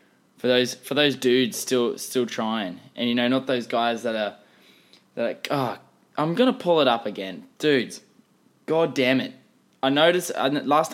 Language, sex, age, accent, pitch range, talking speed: English, male, 10-29, Australian, 115-150 Hz, 180 wpm